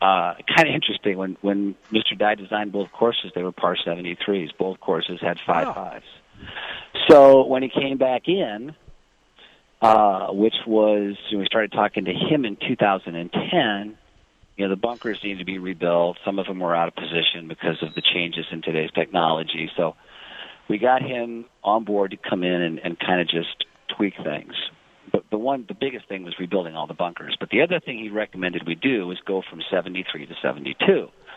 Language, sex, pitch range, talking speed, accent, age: English, male, 85-105 Hz, 190 wpm, American, 40-59